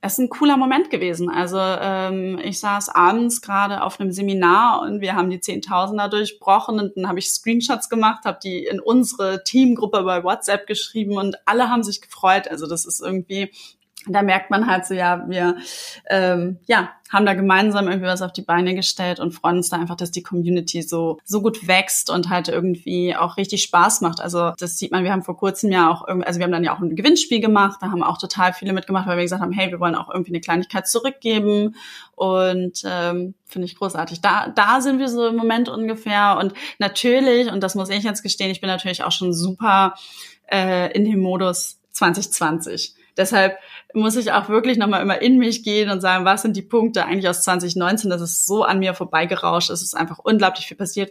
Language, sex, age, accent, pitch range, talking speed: German, female, 20-39, German, 180-205 Hz, 215 wpm